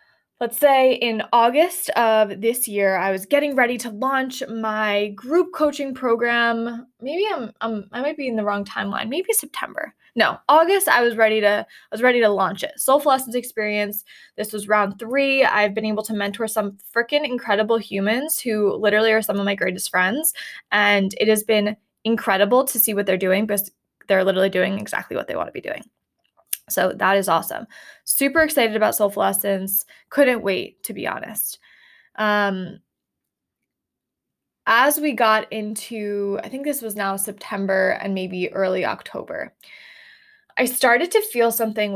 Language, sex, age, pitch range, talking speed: English, female, 10-29, 205-260 Hz, 170 wpm